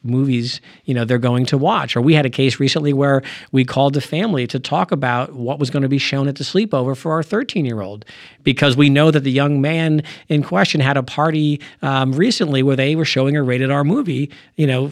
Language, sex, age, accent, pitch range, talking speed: English, male, 50-69, American, 130-175 Hz, 230 wpm